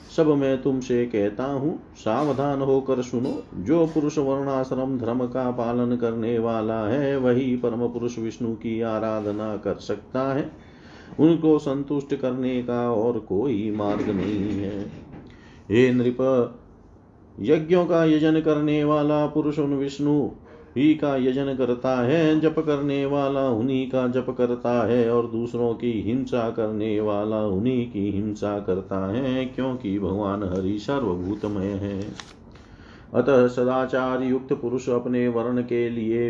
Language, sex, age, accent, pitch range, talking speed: Hindi, male, 40-59, native, 105-135 Hz, 130 wpm